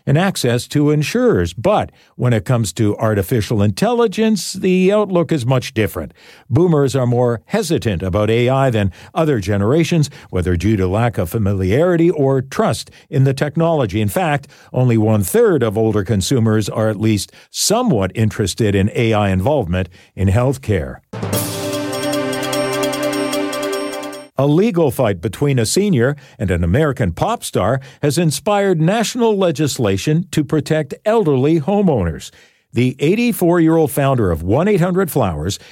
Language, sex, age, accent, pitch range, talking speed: English, male, 50-69, American, 105-155 Hz, 130 wpm